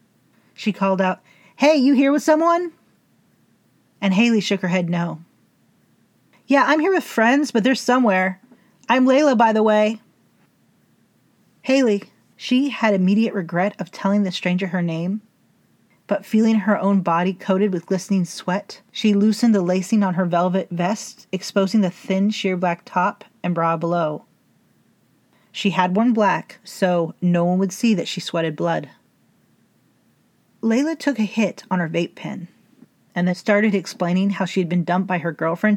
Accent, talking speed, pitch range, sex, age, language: American, 165 wpm, 180-215 Hz, female, 30-49, English